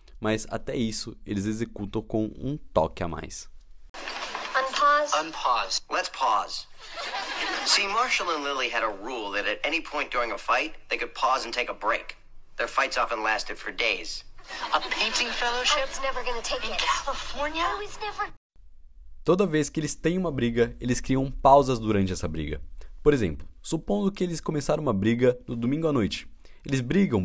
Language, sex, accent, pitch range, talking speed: Portuguese, male, Brazilian, 95-155 Hz, 80 wpm